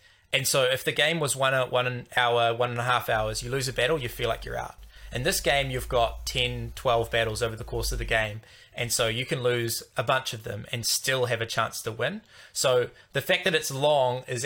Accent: Australian